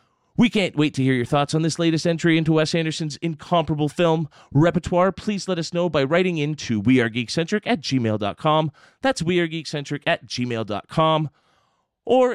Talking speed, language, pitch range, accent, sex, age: 160 wpm, English, 125-165 Hz, American, male, 30-49